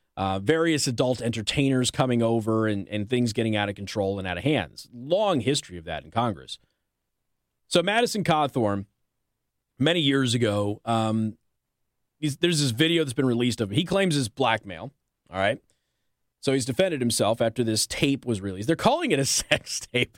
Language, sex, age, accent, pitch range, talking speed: English, male, 30-49, American, 115-165 Hz, 180 wpm